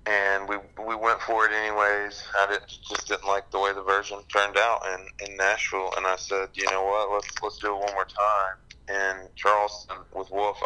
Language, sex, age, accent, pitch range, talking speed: English, male, 30-49, American, 95-100 Hz, 215 wpm